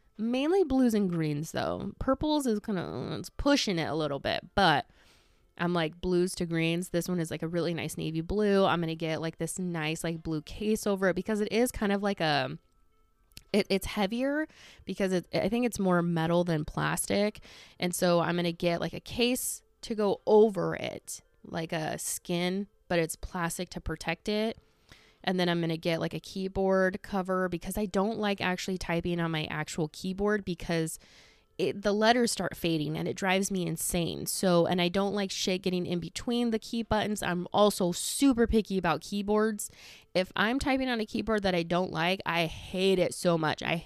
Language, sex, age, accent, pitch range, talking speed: English, female, 20-39, American, 170-210 Hz, 200 wpm